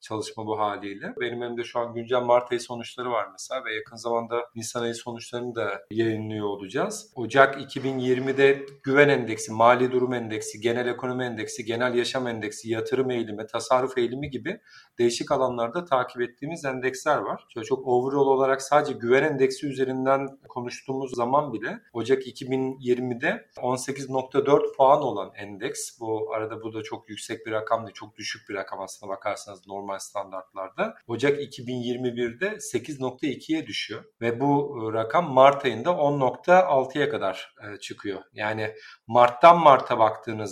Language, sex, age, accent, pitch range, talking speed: Turkish, male, 40-59, native, 115-135 Hz, 140 wpm